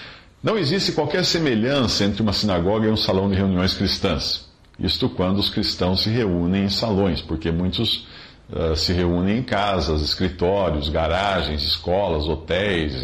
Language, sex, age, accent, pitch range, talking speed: Portuguese, male, 50-69, Brazilian, 85-125 Hz, 145 wpm